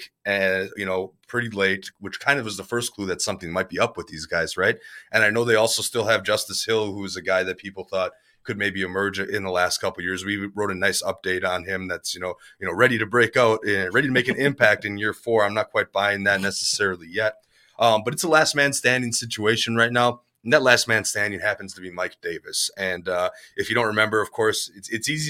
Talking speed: 255 wpm